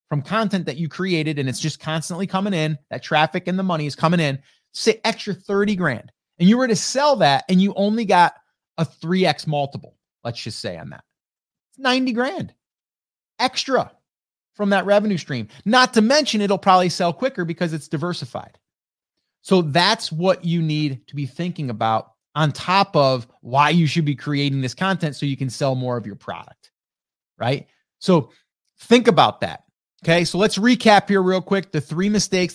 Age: 30-49